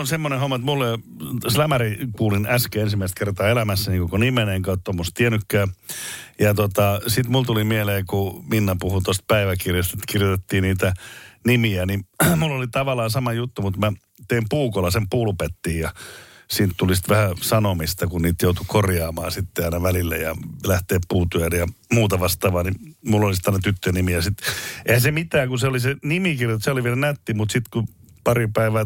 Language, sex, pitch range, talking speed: Finnish, male, 95-120 Hz, 180 wpm